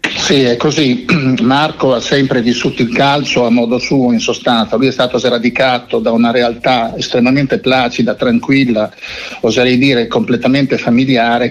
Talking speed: 145 wpm